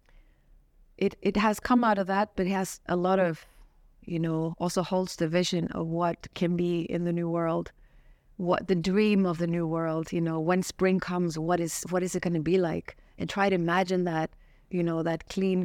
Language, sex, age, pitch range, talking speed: English, female, 30-49, 160-185 Hz, 220 wpm